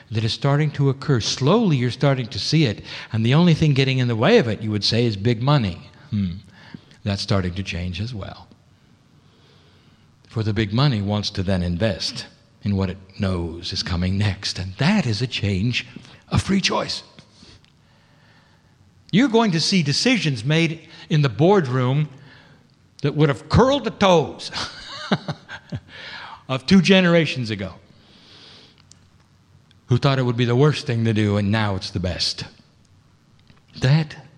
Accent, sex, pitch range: American, male, 100-145 Hz